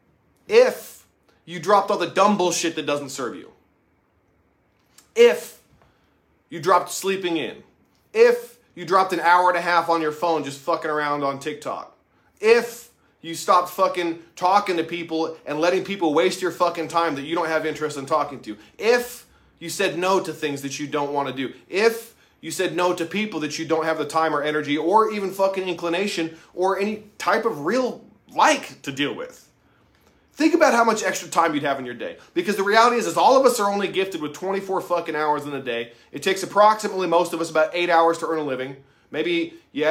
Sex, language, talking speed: male, English, 205 wpm